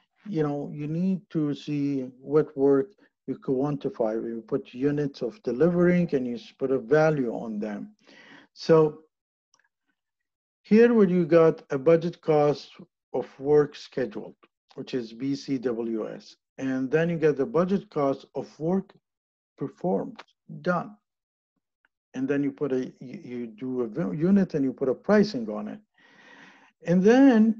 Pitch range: 135-175 Hz